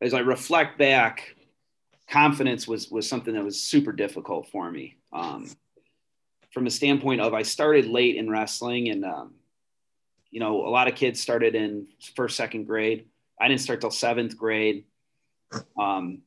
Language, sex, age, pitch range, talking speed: English, male, 30-49, 115-145 Hz, 160 wpm